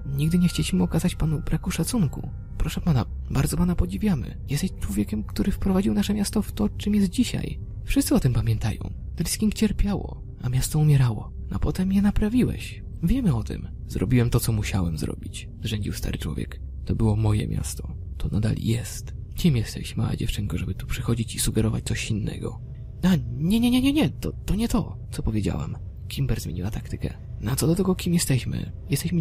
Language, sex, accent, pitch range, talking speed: Polish, male, native, 95-155 Hz, 200 wpm